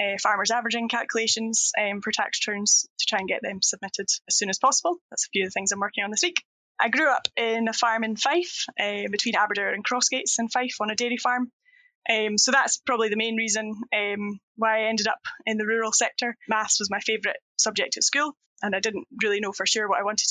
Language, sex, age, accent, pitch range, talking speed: English, female, 10-29, British, 210-245 Hz, 240 wpm